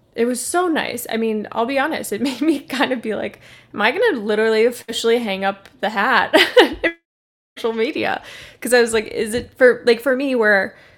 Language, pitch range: English, 200-245 Hz